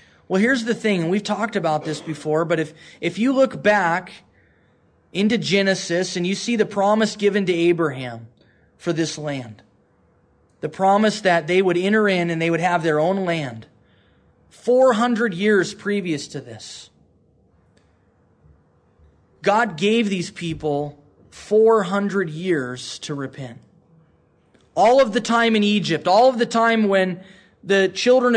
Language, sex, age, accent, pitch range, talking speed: English, male, 20-39, American, 165-225 Hz, 145 wpm